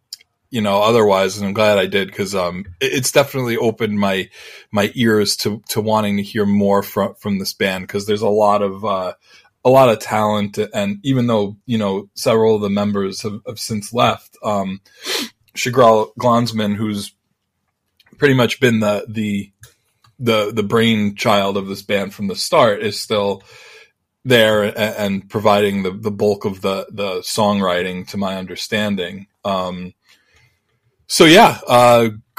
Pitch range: 100-115 Hz